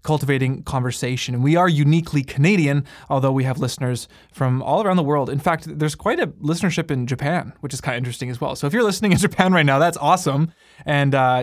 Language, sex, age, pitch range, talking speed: English, male, 20-39, 130-170 Hz, 225 wpm